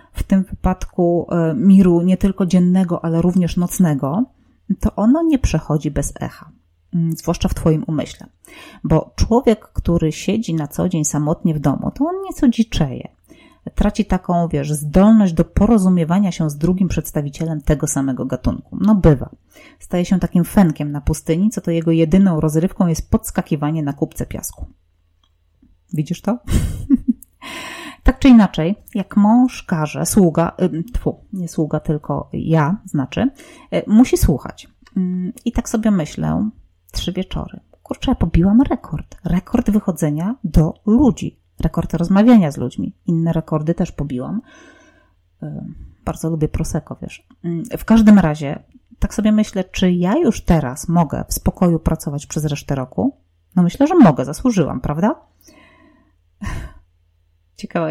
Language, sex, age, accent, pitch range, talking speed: Polish, female, 30-49, native, 150-200 Hz, 140 wpm